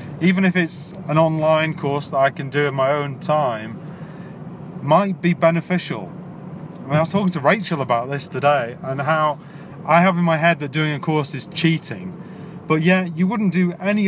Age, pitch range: 30-49, 145-175 Hz